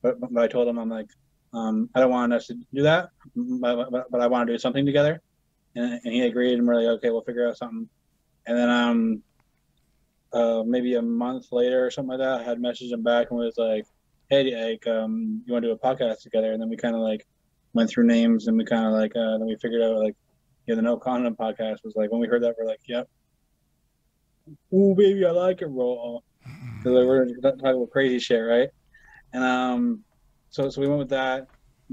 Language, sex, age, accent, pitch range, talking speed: English, male, 20-39, American, 120-135 Hz, 230 wpm